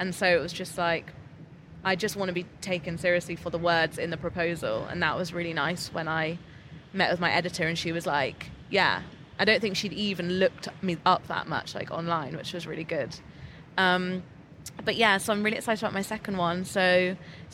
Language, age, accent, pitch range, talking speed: English, 20-39, British, 165-195 Hz, 220 wpm